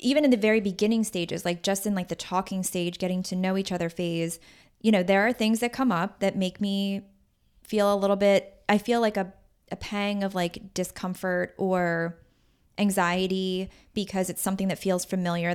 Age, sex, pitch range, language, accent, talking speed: 20-39, female, 180-205 Hz, English, American, 195 wpm